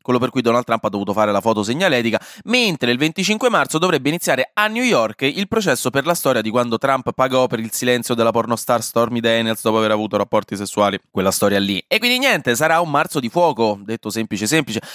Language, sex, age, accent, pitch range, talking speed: Italian, male, 20-39, native, 115-175 Hz, 220 wpm